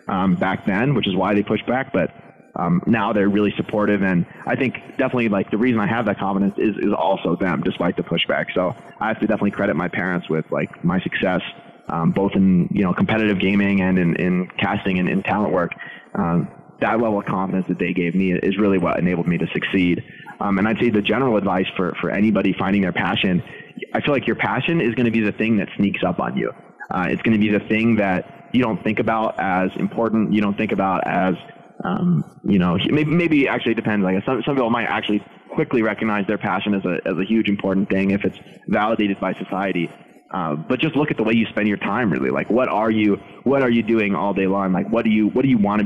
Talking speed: 245 wpm